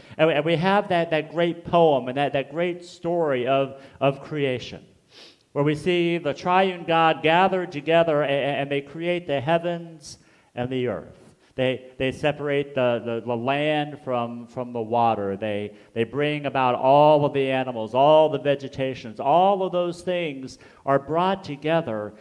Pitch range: 130-170 Hz